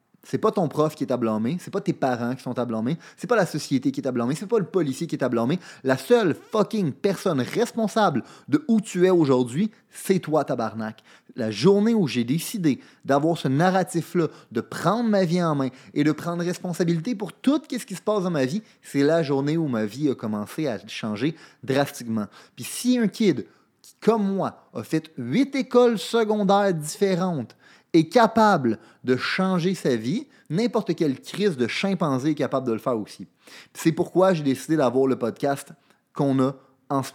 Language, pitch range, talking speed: French, 130-195 Hz, 200 wpm